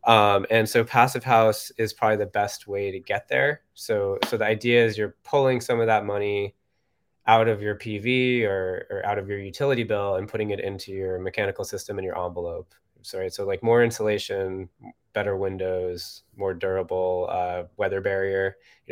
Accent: American